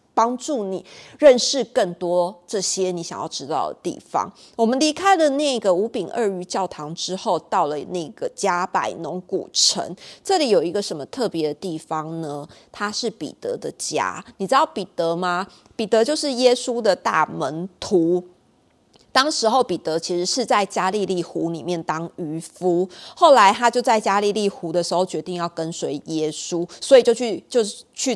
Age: 30-49